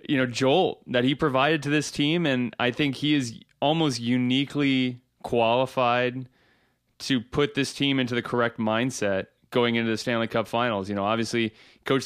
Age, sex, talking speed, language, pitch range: 20-39, male, 175 wpm, English, 110-135 Hz